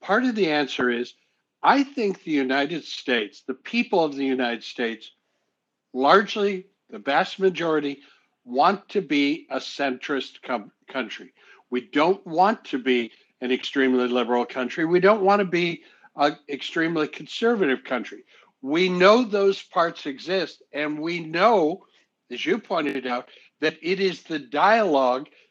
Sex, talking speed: male, 145 wpm